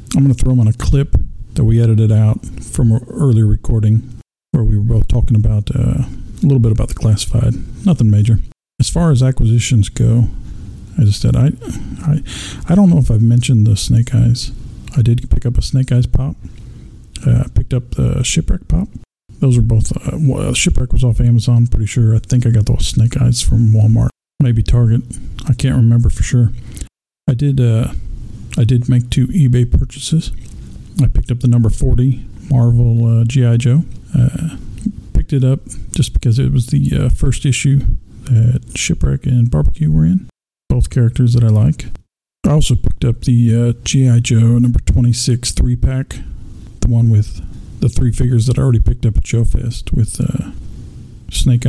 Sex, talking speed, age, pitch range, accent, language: male, 190 wpm, 50-69, 110-125 Hz, American, English